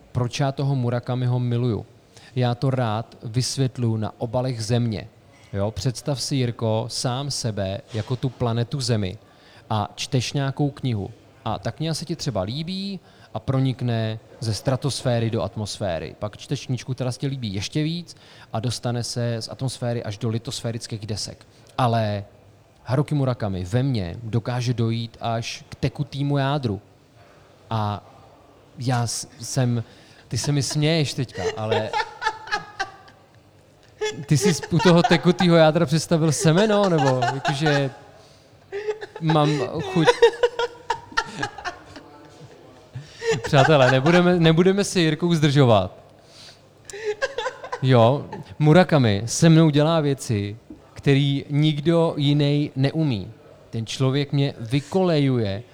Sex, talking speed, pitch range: male, 115 wpm, 115-150 Hz